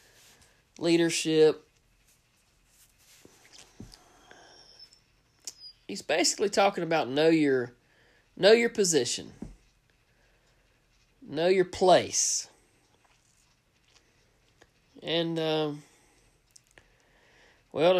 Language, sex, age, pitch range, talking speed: English, male, 40-59, 130-175 Hz, 55 wpm